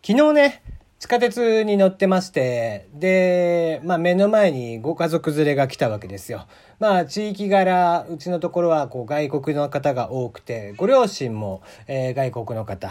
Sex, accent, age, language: male, native, 40-59, Japanese